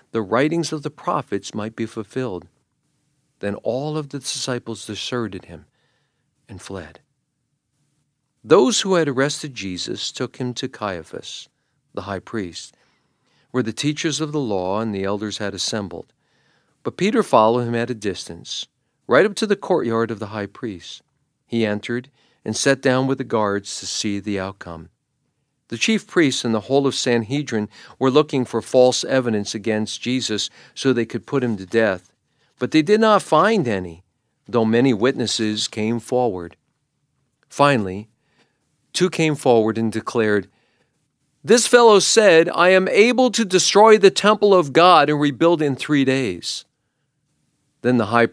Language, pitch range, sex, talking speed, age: English, 110-145 Hz, male, 160 wpm, 50-69